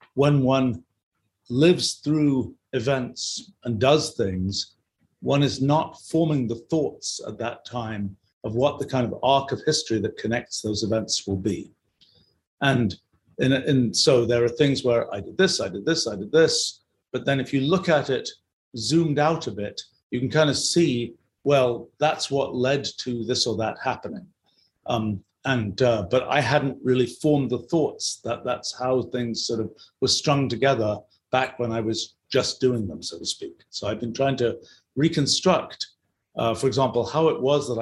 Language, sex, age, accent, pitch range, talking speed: English, male, 50-69, British, 115-140 Hz, 175 wpm